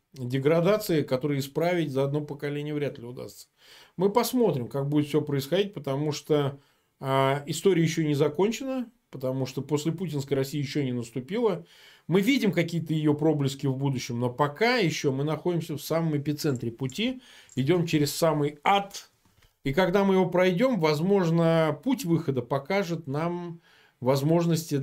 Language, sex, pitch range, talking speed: Russian, male, 125-160 Hz, 145 wpm